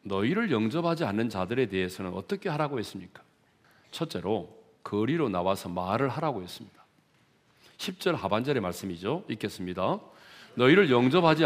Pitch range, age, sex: 105-170 Hz, 40-59, male